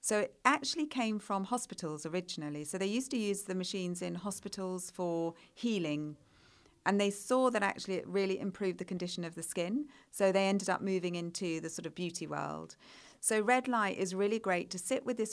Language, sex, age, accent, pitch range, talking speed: English, female, 40-59, British, 175-215 Hz, 205 wpm